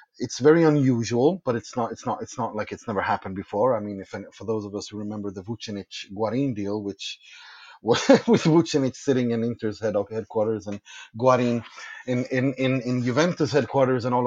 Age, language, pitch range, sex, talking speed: 30-49, English, 105-130 Hz, male, 195 wpm